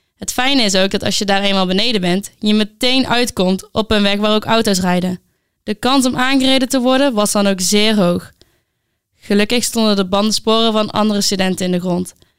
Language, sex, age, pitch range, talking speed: Dutch, female, 10-29, 200-240 Hz, 205 wpm